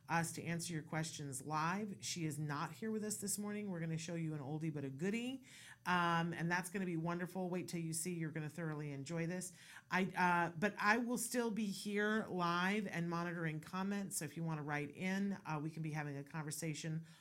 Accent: American